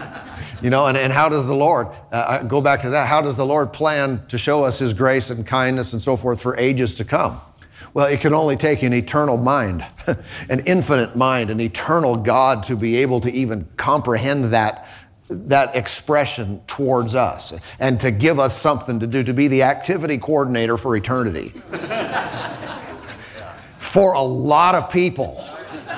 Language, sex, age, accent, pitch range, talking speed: English, male, 50-69, American, 110-140 Hz, 175 wpm